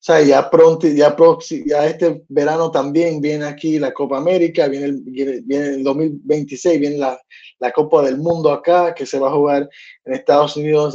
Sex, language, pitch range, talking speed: male, English, 135-170 Hz, 170 wpm